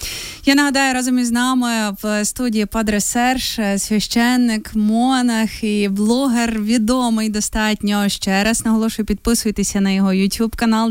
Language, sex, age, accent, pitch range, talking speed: Ukrainian, female, 20-39, native, 195-235 Hz, 120 wpm